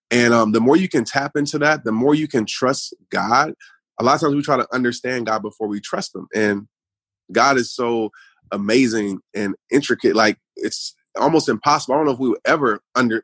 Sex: male